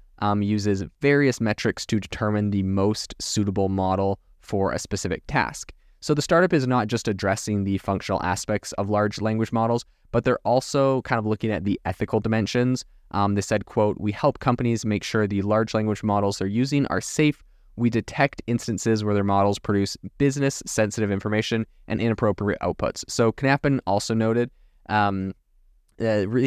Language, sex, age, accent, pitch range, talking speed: English, male, 20-39, American, 100-120 Hz, 165 wpm